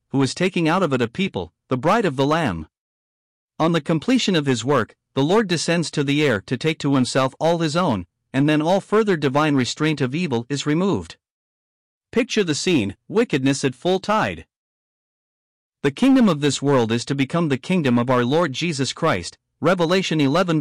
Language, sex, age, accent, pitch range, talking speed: English, male, 50-69, American, 130-170 Hz, 190 wpm